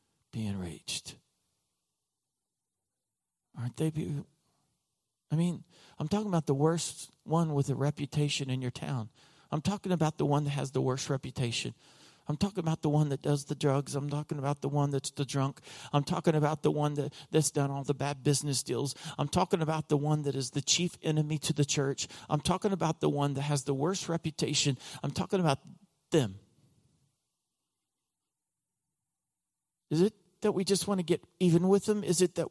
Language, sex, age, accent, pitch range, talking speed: English, male, 50-69, American, 145-190 Hz, 185 wpm